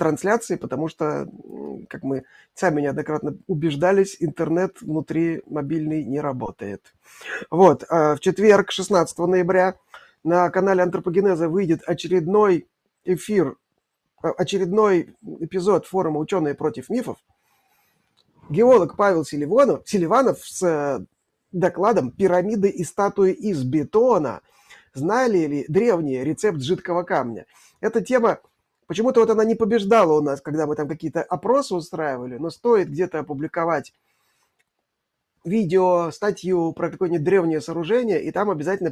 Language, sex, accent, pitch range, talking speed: Russian, male, native, 150-190 Hz, 115 wpm